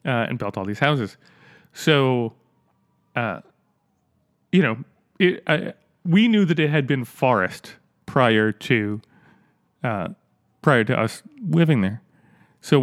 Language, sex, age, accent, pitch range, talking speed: English, male, 30-49, American, 110-150 Hz, 130 wpm